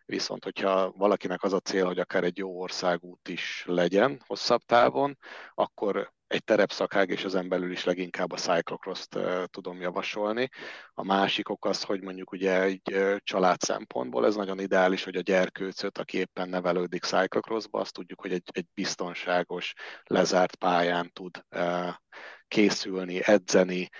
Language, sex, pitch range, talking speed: Hungarian, male, 90-100 Hz, 155 wpm